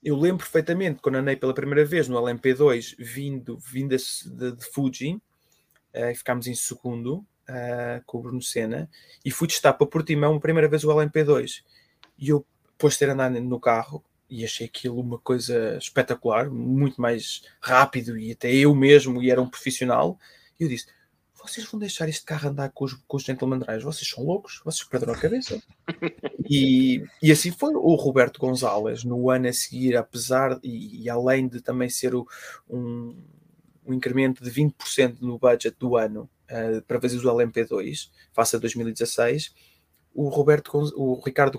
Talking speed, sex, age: 175 wpm, male, 20-39